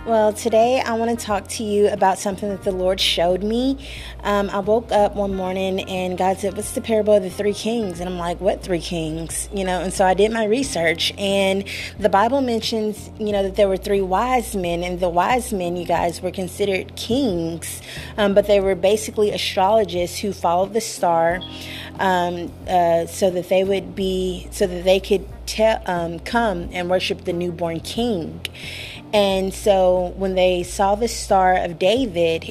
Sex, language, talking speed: female, English, 190 wpm